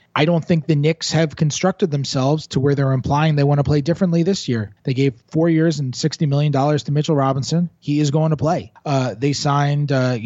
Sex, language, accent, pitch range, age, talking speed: male, English, American, 120-155 Hz, 20-39, 220 wpm